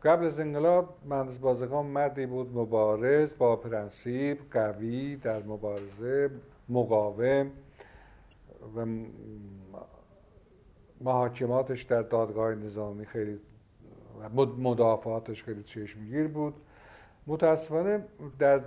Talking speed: 85 wpm